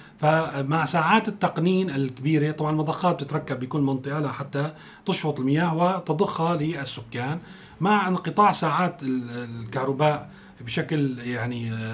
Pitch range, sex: 140-175 Hz, male